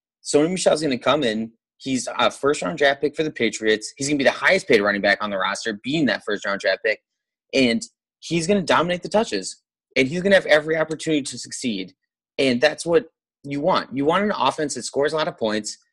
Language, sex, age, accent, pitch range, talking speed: English, male, 30-49, American, 125-160 Hz, 245 wpm